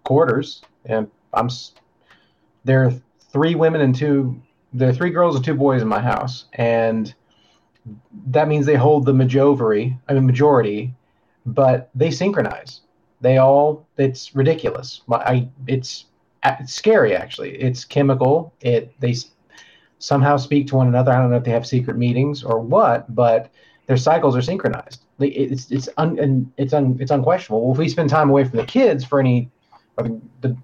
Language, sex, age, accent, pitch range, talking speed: English, male, 40-59, American, 120-140 Hz, 170 wpm